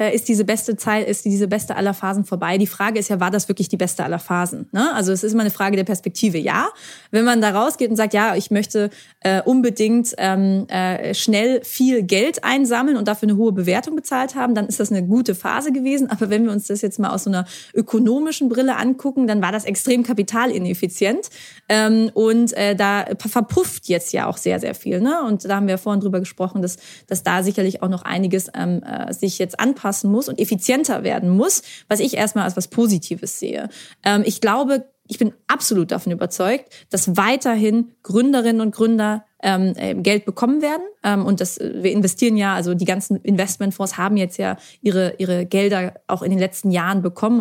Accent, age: German, 20-39